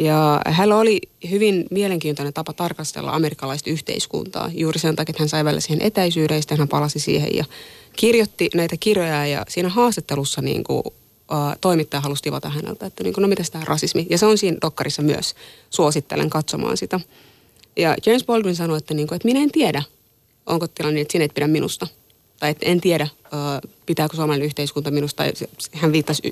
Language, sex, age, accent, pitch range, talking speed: Finnish, female, 20-39, native, 150-175 Hz, 180 wpm